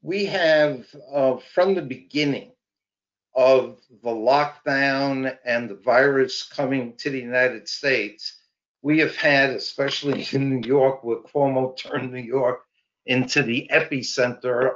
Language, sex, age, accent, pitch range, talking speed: English, male, 60-79, American, 125-150 Hz, 130 wpm